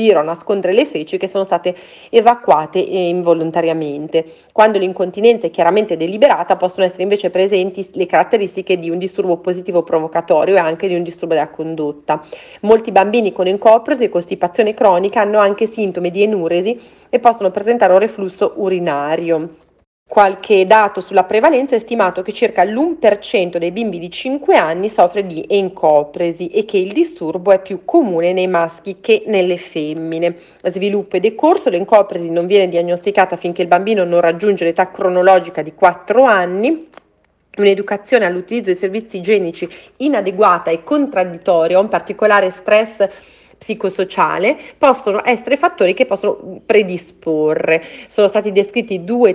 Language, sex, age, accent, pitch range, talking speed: Italian, female, 40-59, native, 175-215 Hz, 140 wpm